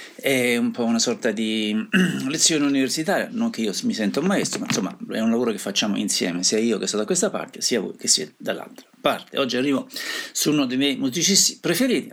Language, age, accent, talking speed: Italian, 50-69, native, 220 wpm